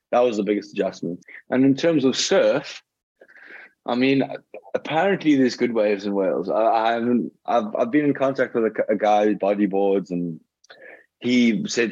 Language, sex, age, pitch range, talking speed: English, male, 20-39, 100-120 Hz, 165 wpm